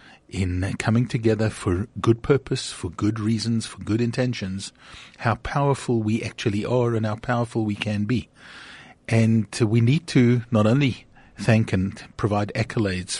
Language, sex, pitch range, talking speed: English, male, 100-120 Hz, 150 wpm